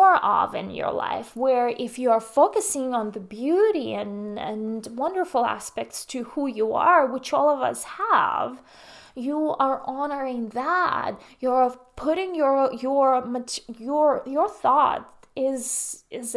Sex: female